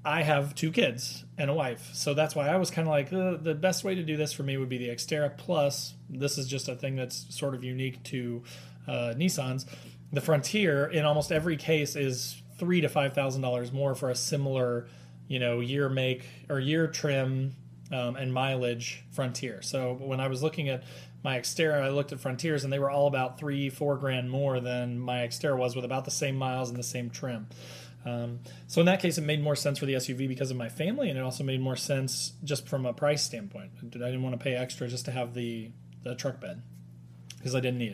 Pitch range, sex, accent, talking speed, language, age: 125-150 Hz, male, American, 230 wpm, English, 30-49